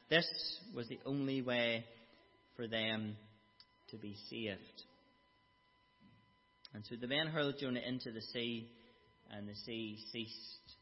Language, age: English, 40-59